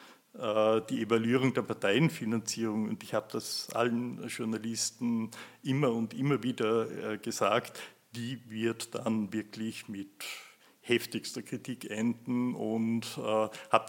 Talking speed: 110 wpm